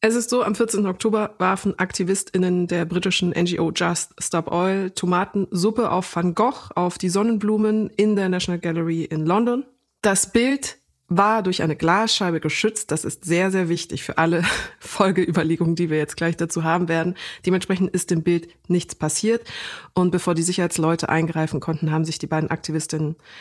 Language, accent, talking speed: German, German, 170 wpm